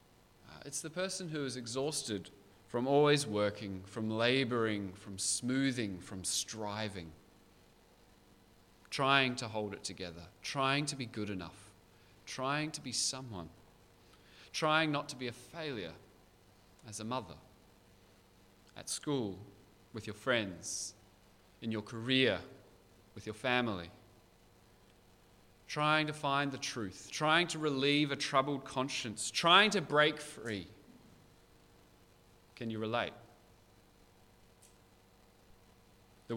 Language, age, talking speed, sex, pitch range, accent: English, 30-49, 110 wpm, male, 95-140 Hz, Australian